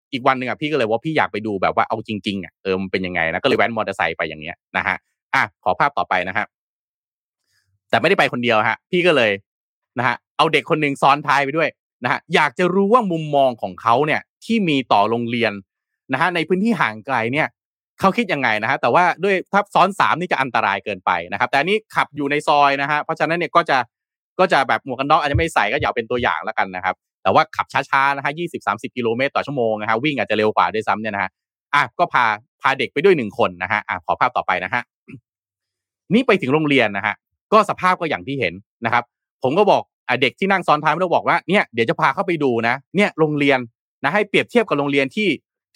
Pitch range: 110-170 Hz